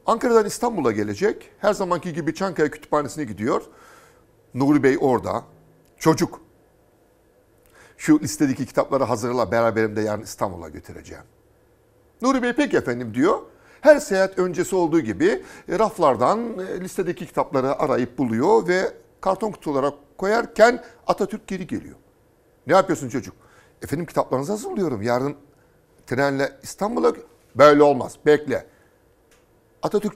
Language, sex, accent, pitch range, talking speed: Turkish, male, native, 120-185 Hz, 115 wpm